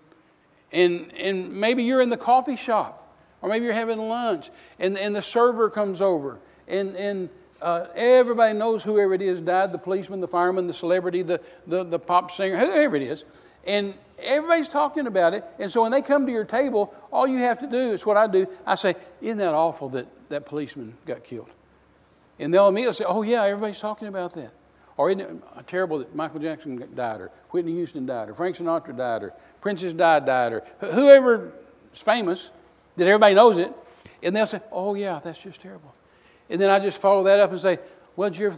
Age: 60-79